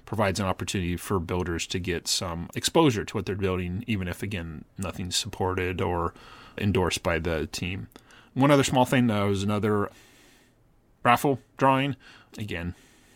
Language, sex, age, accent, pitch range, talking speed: English, male, 30-49, American, 90-115 Hz, 150 wpm